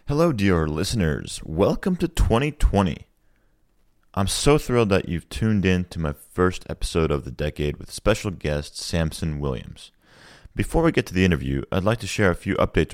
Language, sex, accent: English, male, American